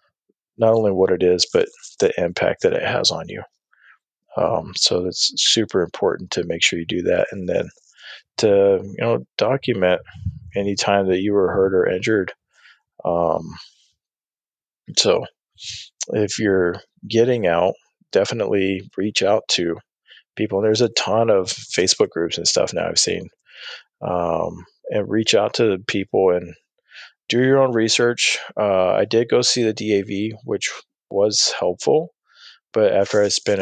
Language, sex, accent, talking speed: English, male, American, 155 wpm